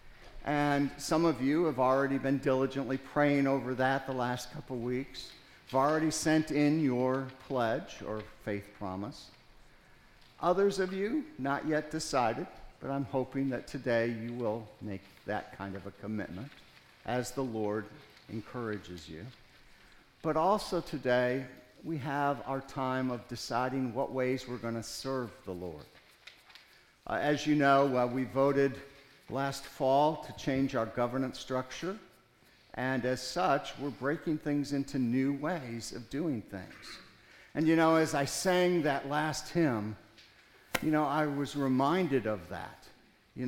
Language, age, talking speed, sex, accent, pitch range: English, 50-69, 150 wpm, male, American, 120-150 Hz